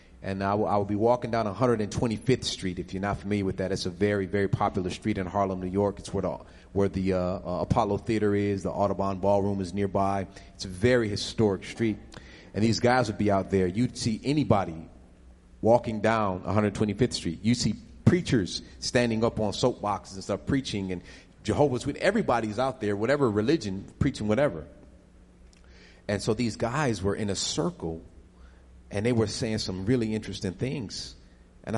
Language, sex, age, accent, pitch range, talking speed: English, male, 30-49, American, 90-110 Hz, 180 wpm